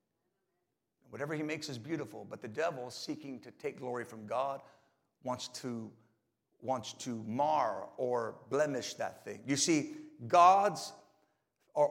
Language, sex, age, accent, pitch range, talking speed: English, male, 50-69, American, 135-185 Hz, 135 wpm